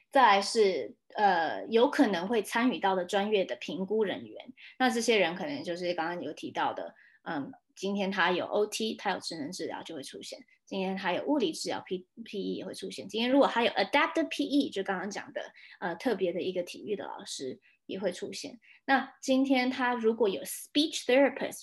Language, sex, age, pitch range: Chinese, female, 20-39, 195-265 Hz